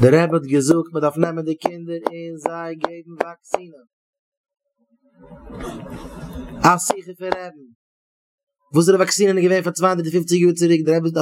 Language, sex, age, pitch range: English, male, 30-49, 140-190 Hz